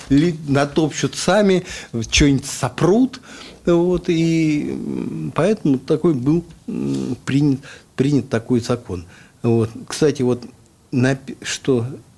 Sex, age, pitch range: male, 50-69, 120-155 Hz